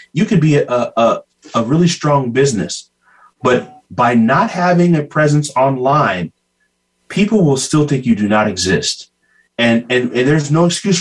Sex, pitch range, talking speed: male, 125-165 Hz, 165 wpm